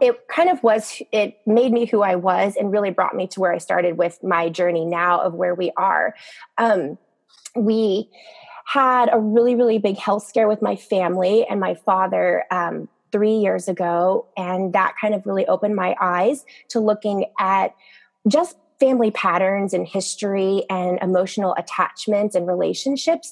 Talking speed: 170 wpm